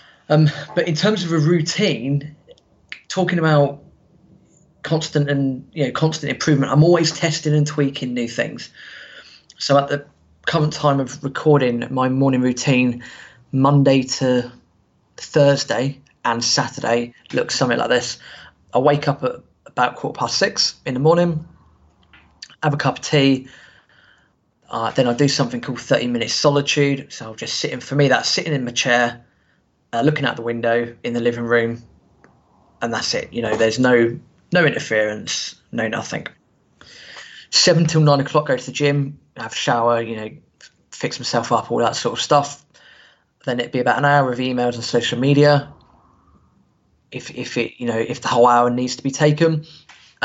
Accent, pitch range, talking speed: British, 120-145 Hz, 170 wpm